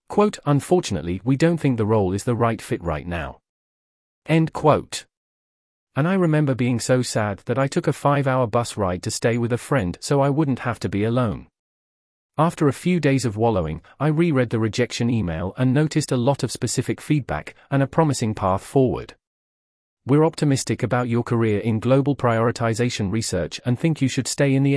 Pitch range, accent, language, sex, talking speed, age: 105-135 Hz, British, English, male, 195 wpm, 40-59